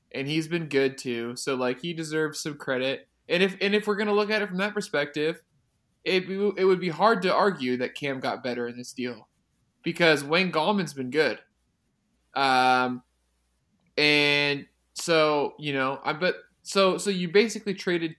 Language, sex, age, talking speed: English, male, 20-39, 180 wpm